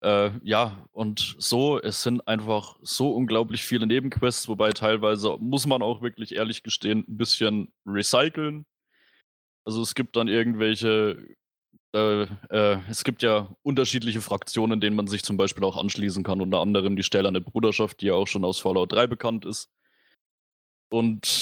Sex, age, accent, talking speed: male, 20-39, German, 165 wpm